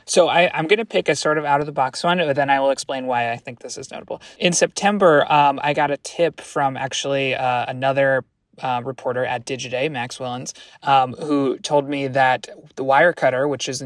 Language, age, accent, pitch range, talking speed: English, 20-39, American, 125-145 Hz, 210 wpm